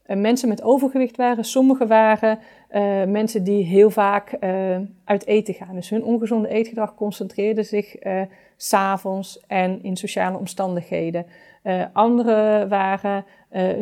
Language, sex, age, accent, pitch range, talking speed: Dutch, female, 40-59, Dutch, 195-230 Hz, 135 wpm